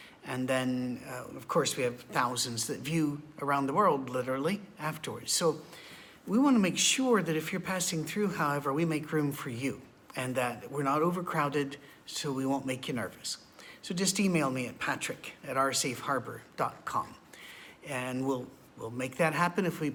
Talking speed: 175 wpm